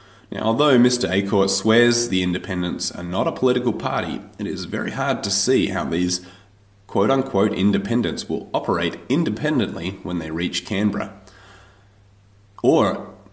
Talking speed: 135 wpm